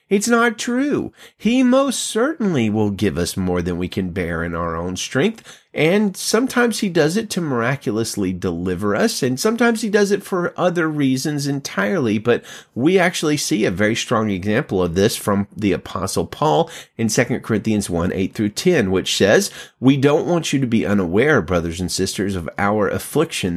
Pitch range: 100-155 Hz